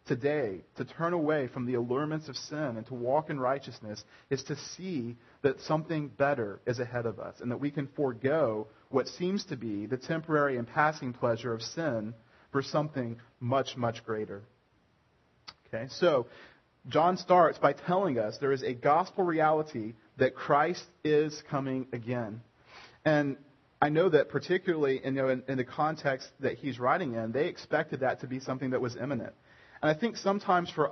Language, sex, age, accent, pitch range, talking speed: English, male, 40-59, American, 125-155 Hz, 170 wpm